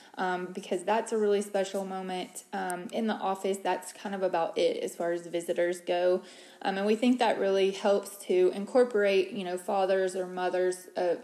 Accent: American